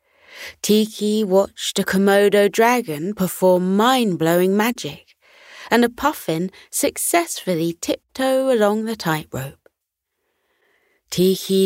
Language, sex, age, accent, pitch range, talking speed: English, female, 30-49, British, 170-230 Hz, 85 wpm